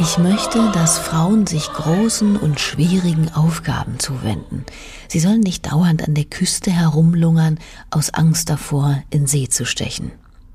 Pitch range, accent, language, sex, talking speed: 145-175 Hz, German, German, female, 140 wpm